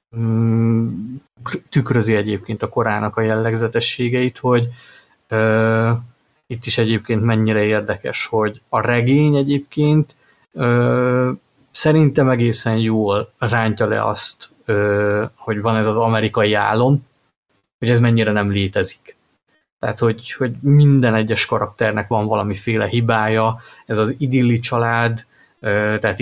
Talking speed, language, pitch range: 110 wpm, Hungarian, 110-120 Hz